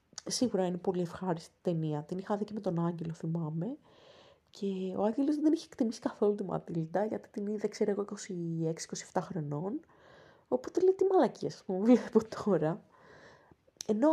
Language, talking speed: Greek, 160 wpm